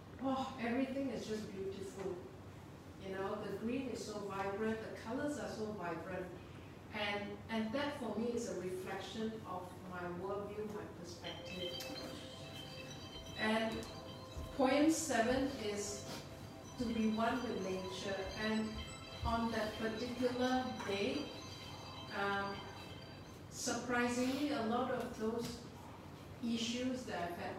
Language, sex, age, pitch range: Chinese, female, 40-59, 195-235 Hz